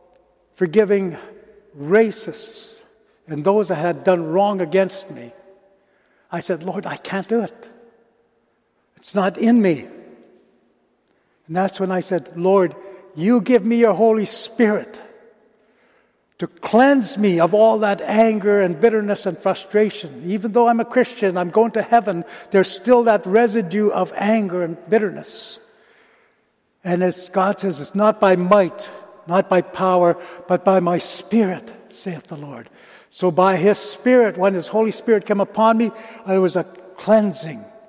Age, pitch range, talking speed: 60-79, 170-210 Hz, 150 wpm